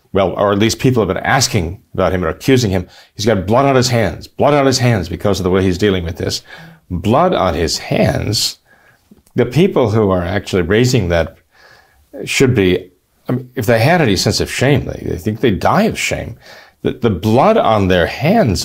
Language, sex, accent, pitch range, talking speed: English, male, American, 95-135 Hz, 210 wpm